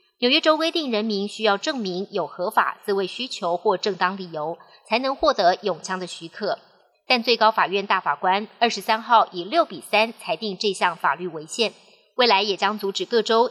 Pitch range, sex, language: 185-235 Hz, male, Chinese